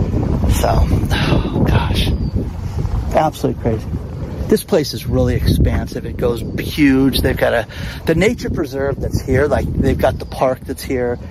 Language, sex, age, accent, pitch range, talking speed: English, male, 40-59, American, 95-135 Hz, 150 wpm